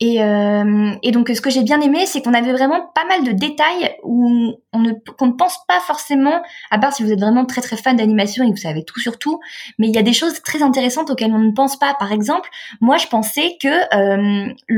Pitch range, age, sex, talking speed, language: 220-300 Hz, 20-39, female, 250 wpm, French